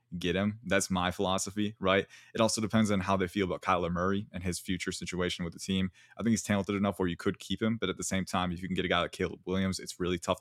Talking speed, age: 290 wpm, 20-39